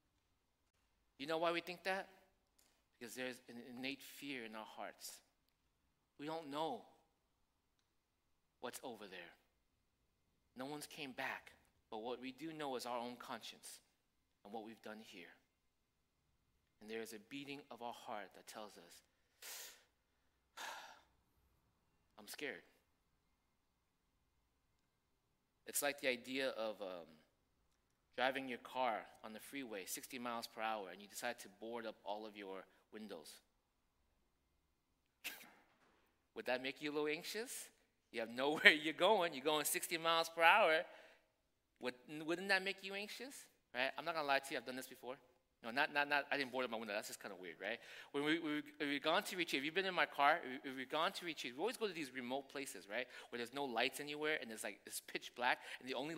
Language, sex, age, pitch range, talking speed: English, male, 30-49, 110-150 Hz, 175 wpm